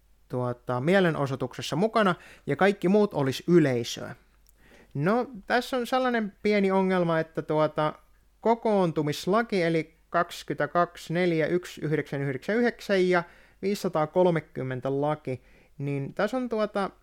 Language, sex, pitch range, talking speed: Finnish, male, 145-195 Hz, 90 wpm